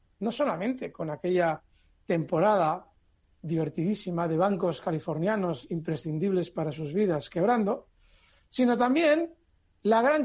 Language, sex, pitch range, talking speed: Spanish, male, 160-220 Hz, 105 wpm